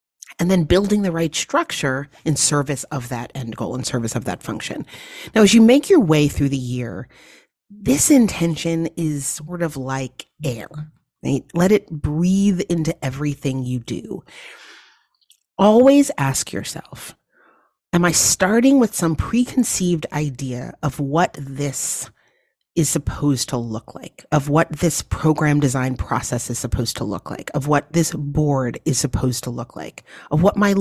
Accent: American